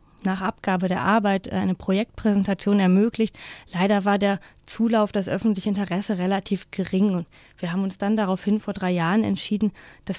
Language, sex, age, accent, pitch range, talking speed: German, female, 20-39, German, 185-220 Hz, 160 wpm